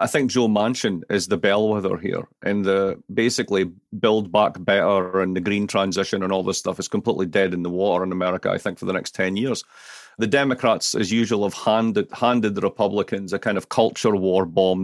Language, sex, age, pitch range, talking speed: English, male, 40-59, 100-110 Hz, 210 wpm